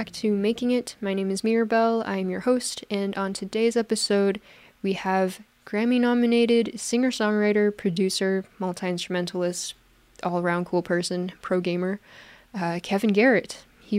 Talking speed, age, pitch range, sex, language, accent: 120 wpm, 10-29, 185-220 Hz, female, English, American